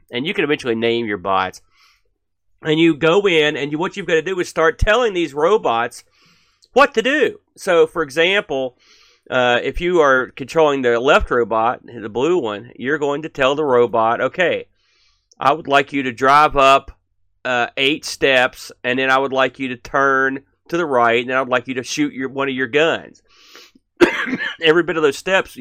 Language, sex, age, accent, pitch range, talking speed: English, male, 40-59, American, 125-165 Hz, 195 wpm